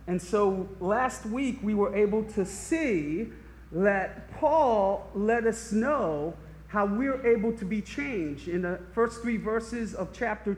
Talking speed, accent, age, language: 155 wpm, American, 40-59, English